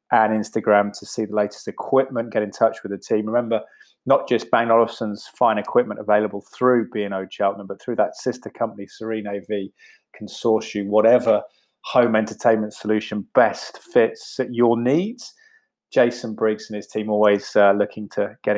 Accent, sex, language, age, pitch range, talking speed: British, male, English, 20-39, 105-115 Hz, 160 wpm